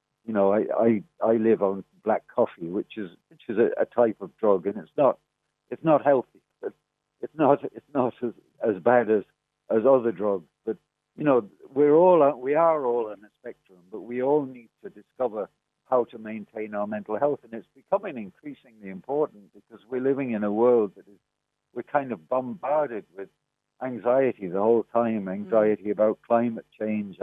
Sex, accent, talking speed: male, British, 185 wpm